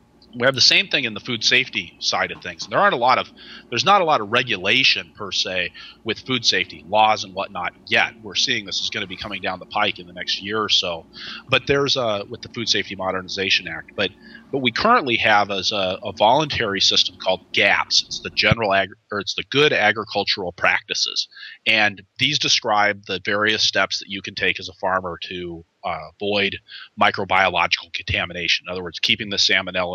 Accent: American